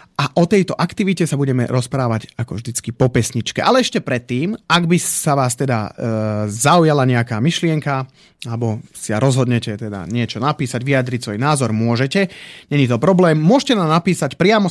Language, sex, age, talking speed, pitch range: Slovak, male, 30-49, 165 wpm, 120-165 Hz